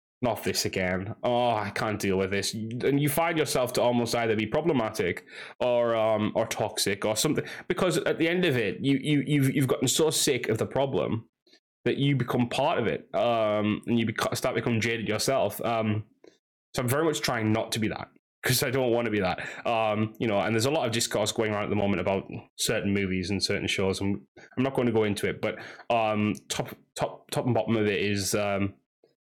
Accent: British